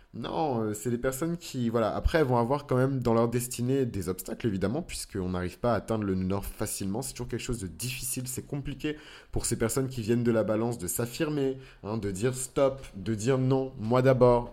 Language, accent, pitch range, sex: French, French, 95-130 Hz, male